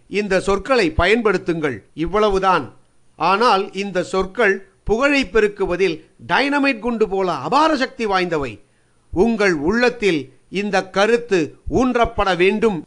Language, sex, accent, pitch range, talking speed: Tamil, male, native, 180-235 Hz, 100 wpm